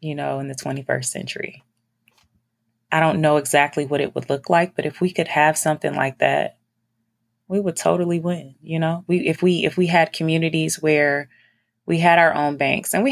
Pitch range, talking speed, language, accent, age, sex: 140-160 Hz, 200 wpm, English, American, 20-39, female